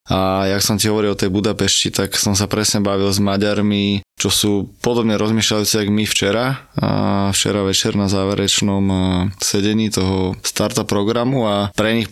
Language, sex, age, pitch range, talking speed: Slovak, male, 20-39, 95-105 Hz, 170 wpm